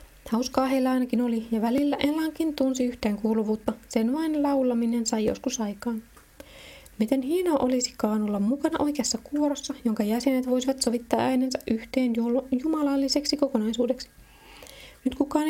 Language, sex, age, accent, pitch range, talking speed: Finnish, female, 20-39, native, 225-275 Hz, 125 wpm